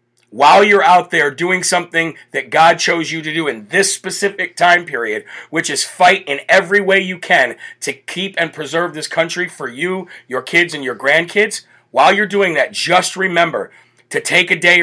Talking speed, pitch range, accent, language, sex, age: 195 wpm, 130-175 Hz, American, English, male, 40-59